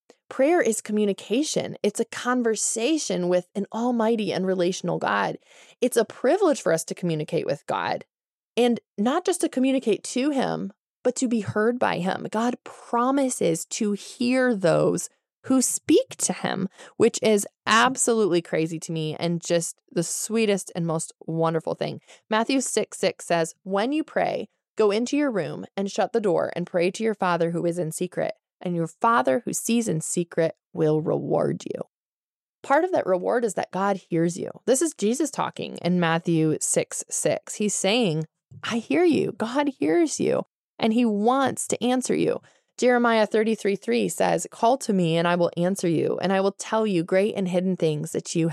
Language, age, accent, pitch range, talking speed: English, 20-39, American, 175-245 Hz, 180 wpm